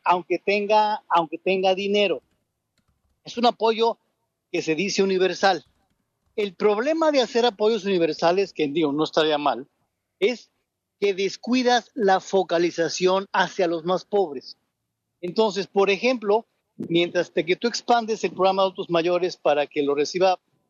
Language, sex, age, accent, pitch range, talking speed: Spanish, male, 50-69, Mexican, 170-215 Hz, 140 wpm